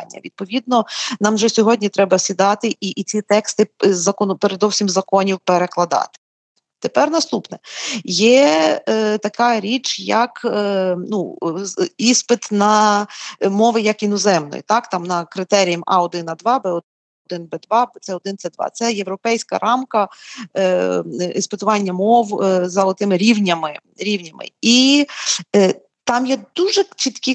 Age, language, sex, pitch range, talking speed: 40-59, Ukrainian, female, 190-230 Hz, 120 wpm